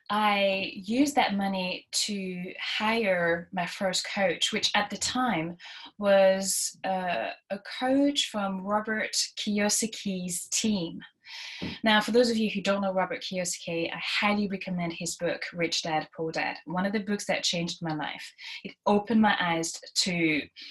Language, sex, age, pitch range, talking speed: English, female, 20-39, 180-220 Hz, 155 wpm